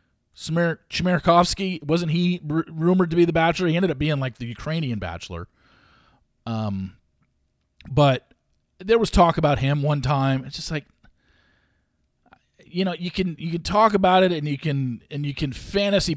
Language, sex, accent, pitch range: English, male, American, 130-180 Hz